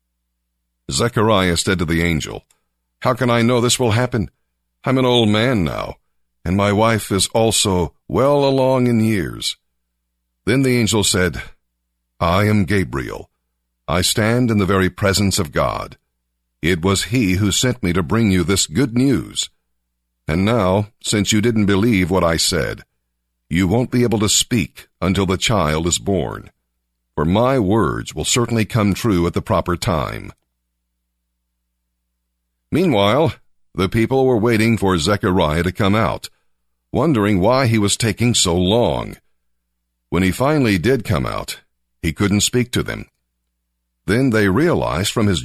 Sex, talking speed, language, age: male, 155 wpm, English, 50-69